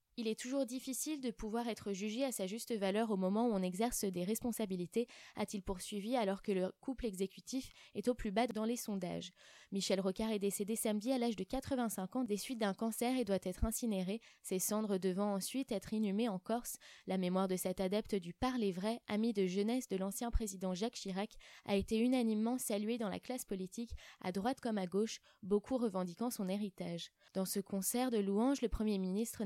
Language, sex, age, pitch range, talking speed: French, female, 20-39, 195-235 Hz, 205 wpm